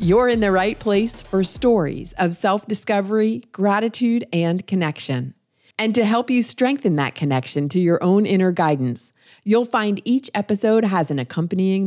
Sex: female